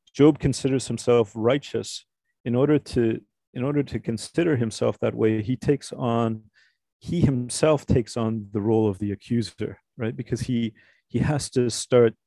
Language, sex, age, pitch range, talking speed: English, male, 40-59, 100-120 Hz, 160 wpm